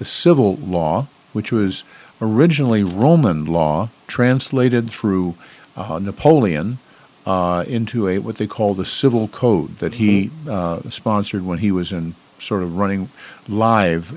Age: 50-69